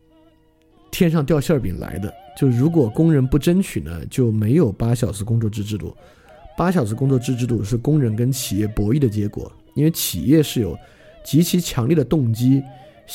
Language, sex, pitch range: Chinese, male, 110-145 Hz